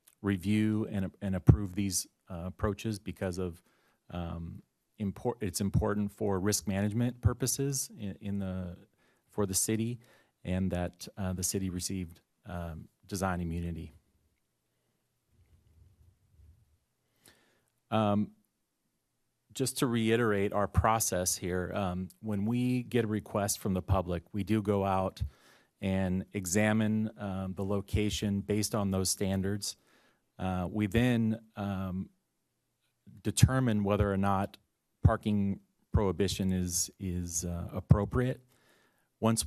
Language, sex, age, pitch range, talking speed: English, male, 30-49, 95-110 Hz, 115 wpm